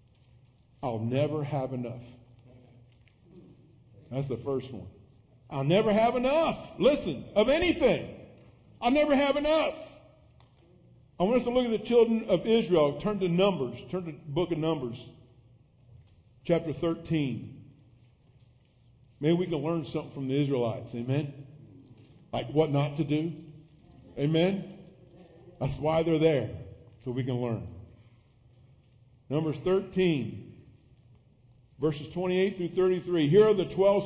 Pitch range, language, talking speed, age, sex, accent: 125-200 Hz, English, 130 wpm, 50-69, male, American